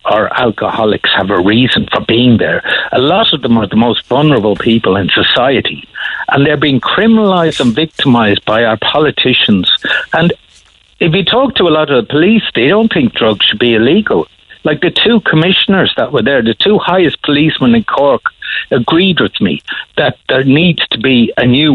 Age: 60-79